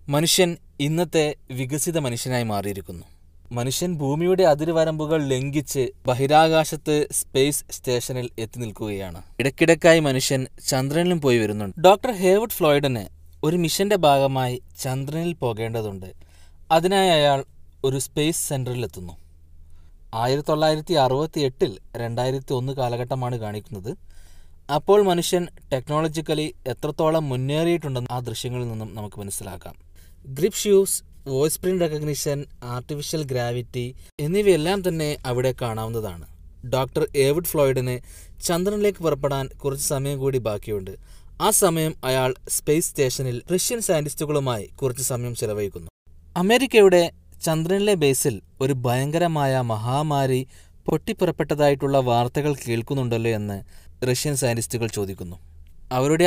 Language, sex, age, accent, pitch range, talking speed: Malayalam, male, 20-39, native, 115-155 Hz, 100 wpm